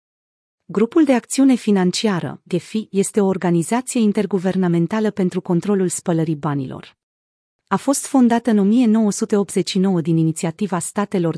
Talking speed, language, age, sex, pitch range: 105 wpm, Romanian, 40-59, female, 170-220 Hz